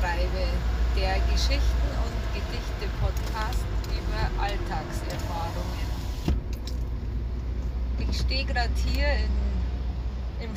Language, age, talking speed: German, 20-39, 75 wpm